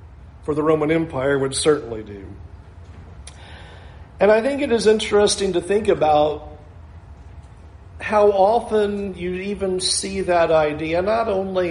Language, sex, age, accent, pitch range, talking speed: English, male, 50-69, American, 135-200 Hz, 130 wpm